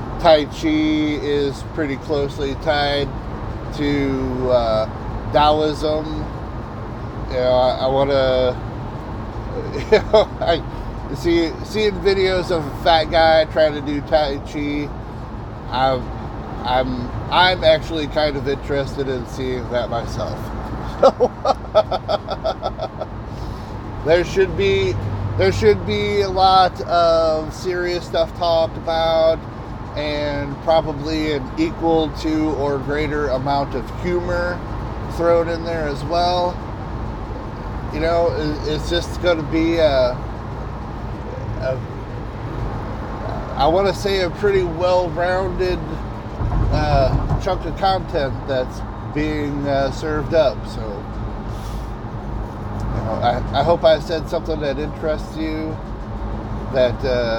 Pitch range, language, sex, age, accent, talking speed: 110-160 Hz, English, male, 30-49, American, 115 wpm